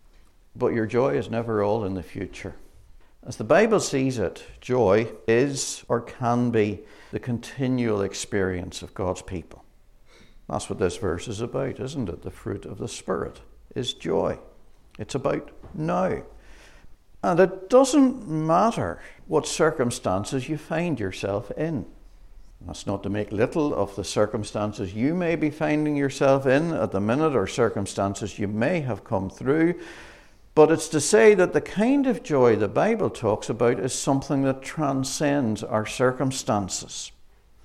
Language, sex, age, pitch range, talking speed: English, male, 60-79, 105-160 Hz, 155 wpm